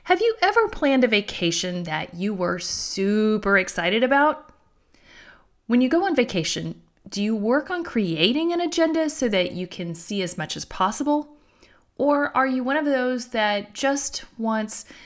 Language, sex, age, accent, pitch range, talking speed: English, female, 40-59, American, 185-280 Hz, 165 wpm